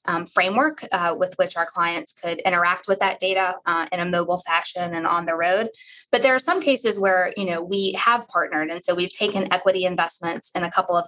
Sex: female